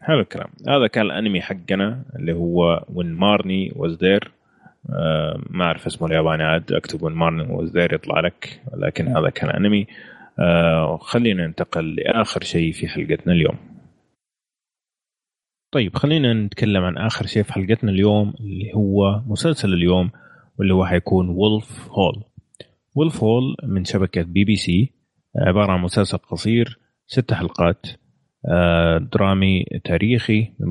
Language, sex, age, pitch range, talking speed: Arabic, male, 30-49, 90-110 Hz, 135 wpm